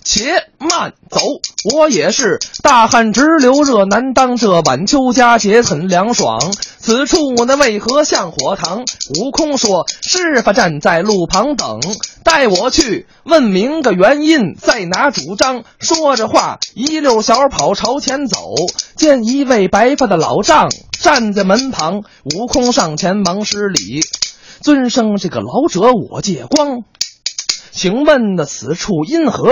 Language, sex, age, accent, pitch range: Chinese, male, 20-39, native, 200-285 Hz